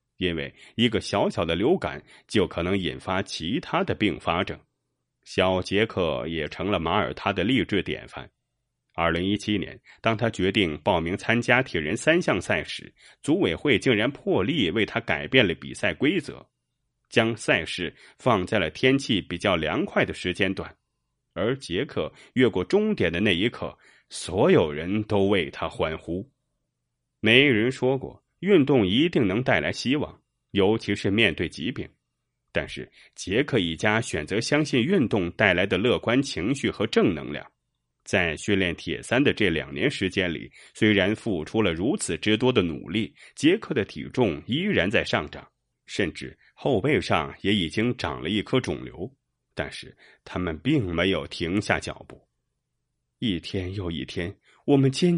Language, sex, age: Chinese, male, 30-49